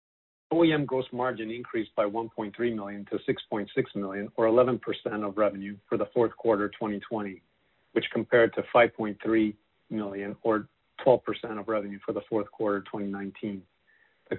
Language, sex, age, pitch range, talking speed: English, male, 40-59, 100-115 Hz, 150 wpm